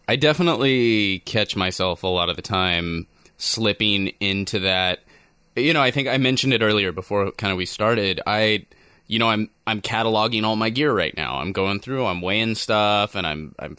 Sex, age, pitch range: male, 20-39, 95-110 Hz